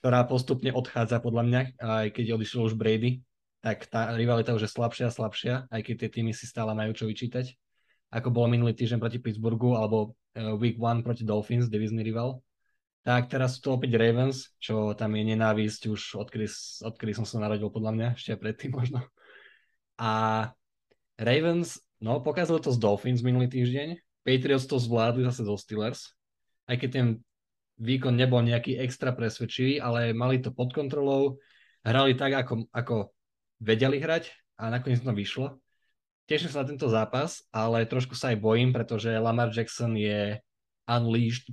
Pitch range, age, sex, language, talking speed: 110-125 Hz, 20-39, male, Slovak, 170 wpm